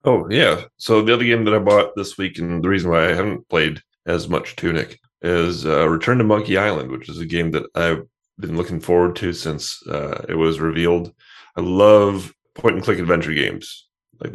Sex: male